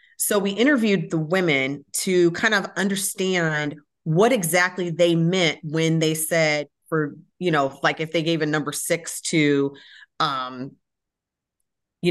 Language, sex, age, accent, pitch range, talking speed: English, female, 30-49, American, 150-180 Hz, 145 wpm